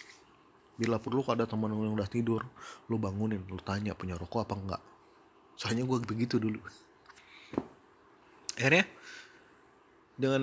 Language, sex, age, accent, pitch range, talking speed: Indonesian, male, 30-49, native, 105-135 Hz, 125 wpm